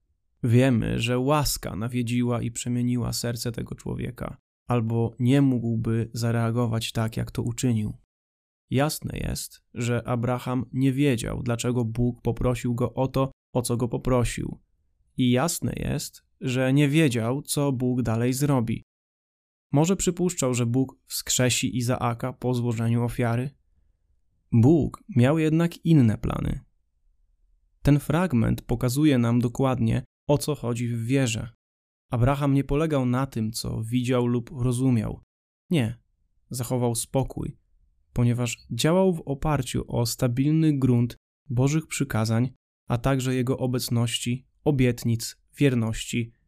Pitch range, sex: 115-135 Hz, male